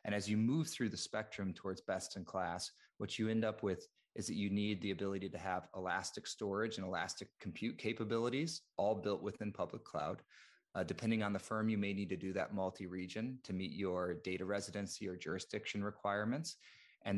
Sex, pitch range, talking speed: male, 95-110 Hz, 190 wpm